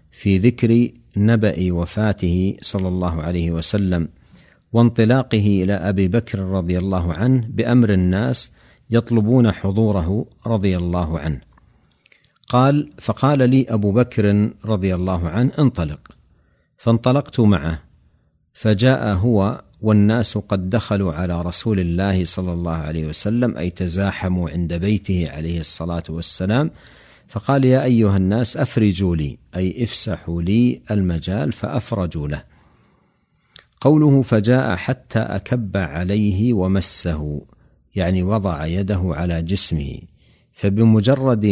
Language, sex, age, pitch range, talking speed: Arabic, male, 50-69, 85-115 Hz, 110 wpm